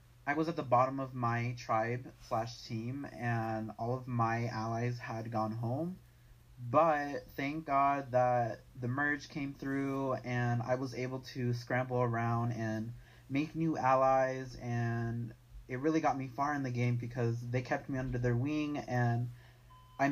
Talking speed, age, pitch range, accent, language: 165 wpm, 20-39, 120-140 Hz, American, English